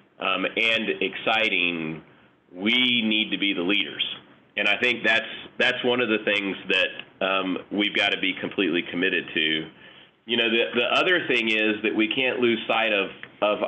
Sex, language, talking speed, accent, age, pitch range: male, English, 180 wpm, American, 30-49, 95-115 Hz